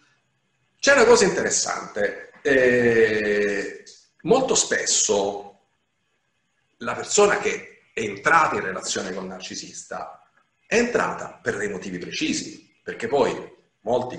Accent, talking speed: native, 110 wpm